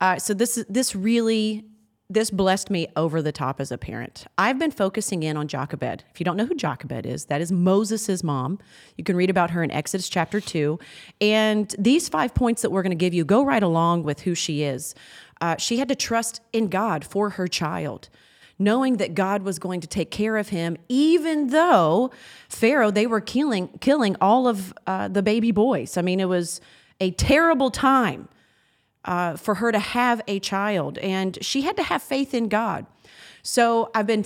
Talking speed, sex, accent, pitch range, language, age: 205 wpm, female, American, 170-230 Hz, English, 30-49